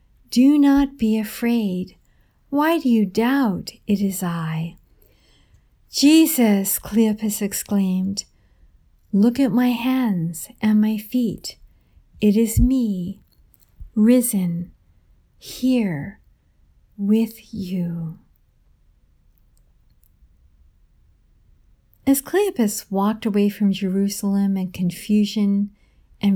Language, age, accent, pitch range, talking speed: English, 50-69, American, 185-230 Hz, 85 wpm